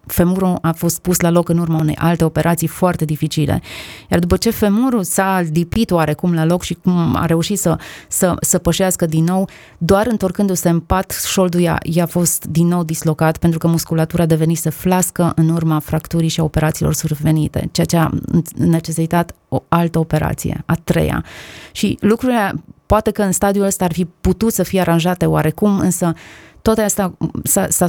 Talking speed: 180 wpm